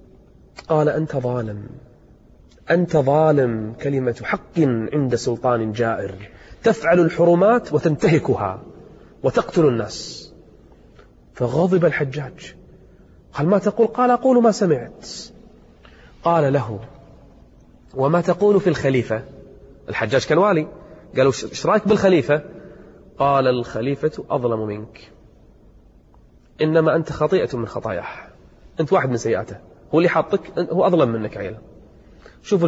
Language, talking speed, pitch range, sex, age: Arabic, 105 wpm, 135-175 Hz, male, 30-49